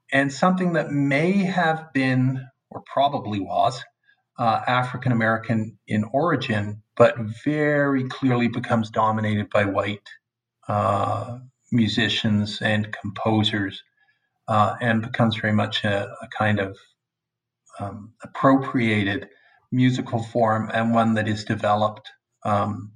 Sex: male